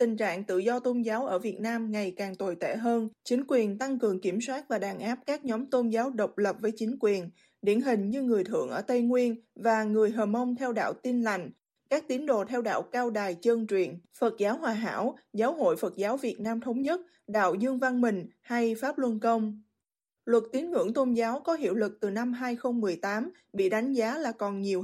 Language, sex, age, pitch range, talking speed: Vietnamese, female, 20-39, 215-255 Hz, 225 wpm